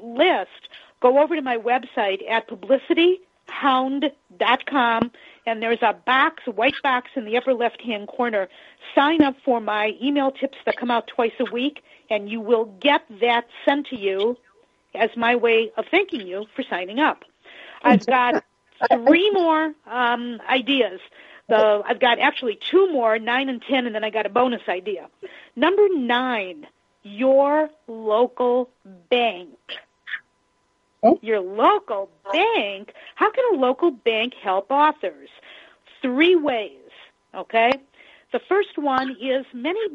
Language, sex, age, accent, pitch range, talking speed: English, female, 40-59, American, 225-290 Hz, 140 wpm